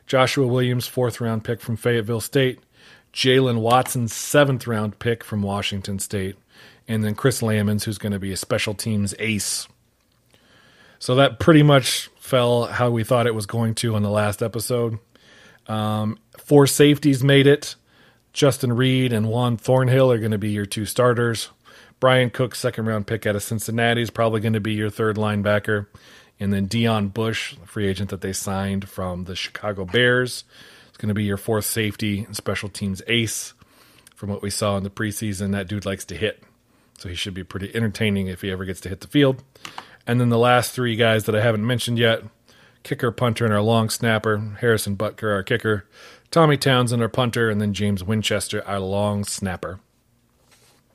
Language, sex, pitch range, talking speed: English, male, 105-125 Hz, 185 wpm